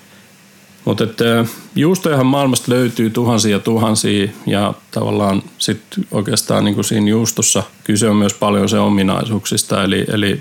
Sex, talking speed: male, 125 wpm